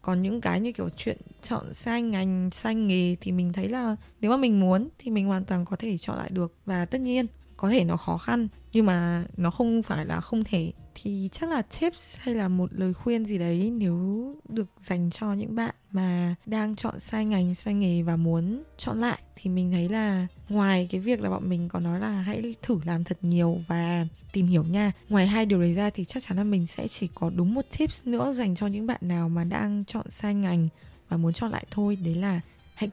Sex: female